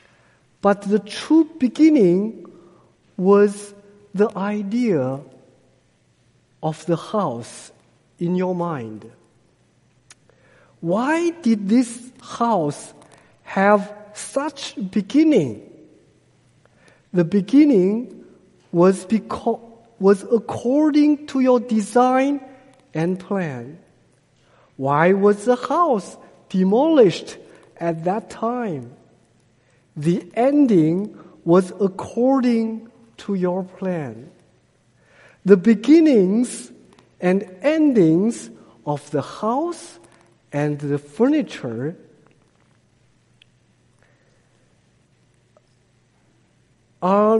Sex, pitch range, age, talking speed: male, 160-245 Hz, 50-69, 70 wpm